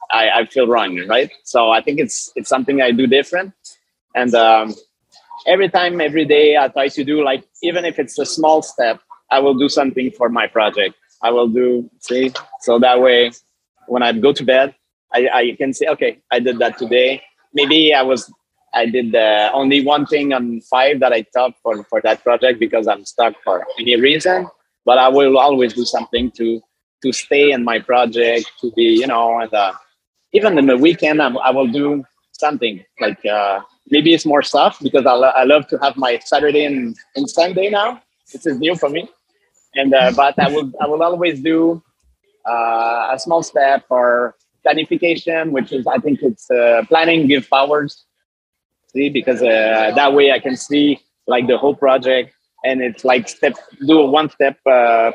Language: English